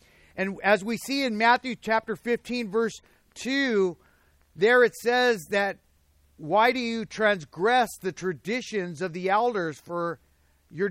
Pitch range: 145-225 Hz